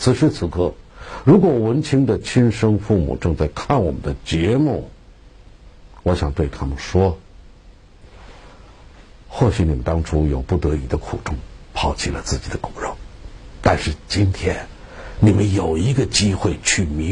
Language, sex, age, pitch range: Chinese, male, 60-79, 80-105 Hz